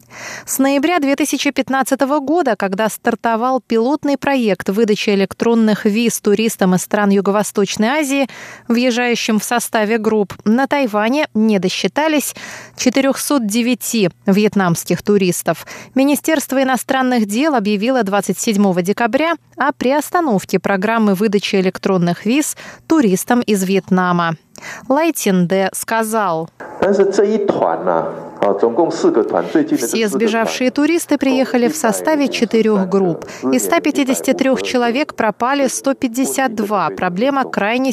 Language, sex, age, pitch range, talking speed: Russian, female, 20-39, 195-265 Hz, 95 wpm